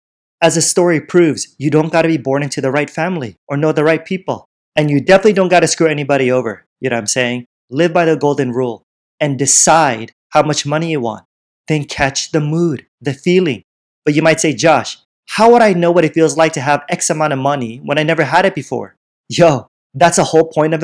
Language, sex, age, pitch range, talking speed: English, male, 30-49, 140-170 Hz, 235 wpm